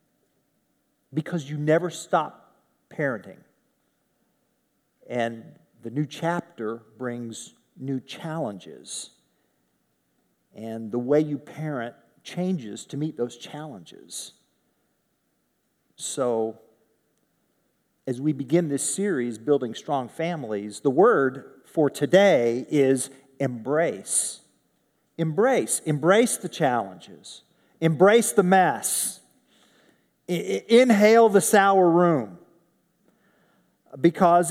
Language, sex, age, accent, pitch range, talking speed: English, male, 50-69, American, 135-185 Hz, 85 wpm